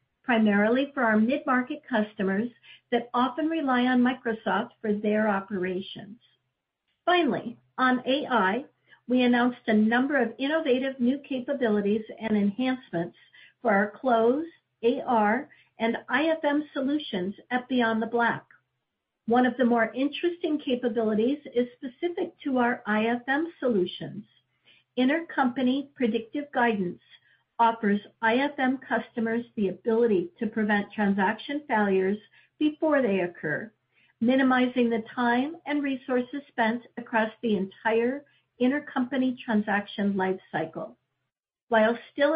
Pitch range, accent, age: 215-260 Hz, American, 50-69